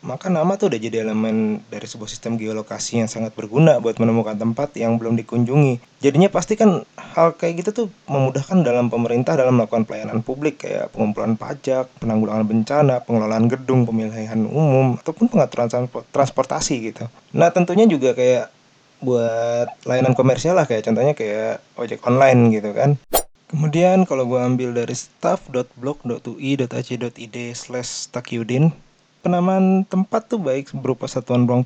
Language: Indonesian